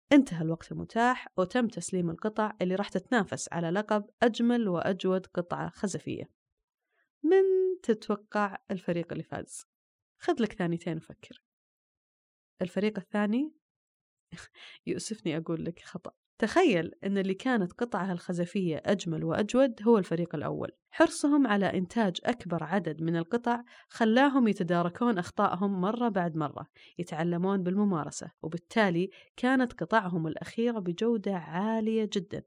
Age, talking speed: 20-39, 115 wpm